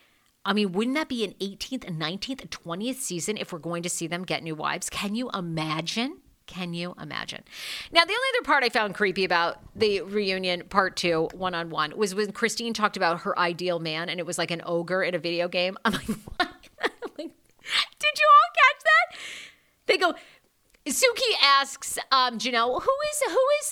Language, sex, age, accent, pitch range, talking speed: English, female, 40-59, American, 175-295 Hz, 195 wpm